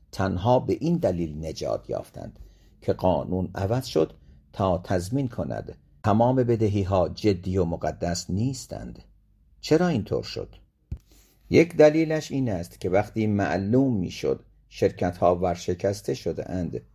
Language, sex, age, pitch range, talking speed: Persian, male, 50-69, 90-110 Hz, 120 wpm